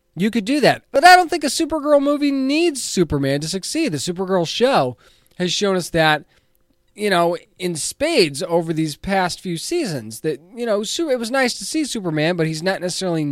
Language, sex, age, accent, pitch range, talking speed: English, male, 20-39, American, 145-195 Hz, 200 wpm